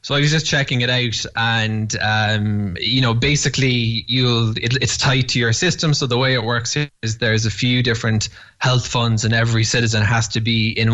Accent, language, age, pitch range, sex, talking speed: Irish, English, 20-39, 110-125 Hz, male, 210 wpm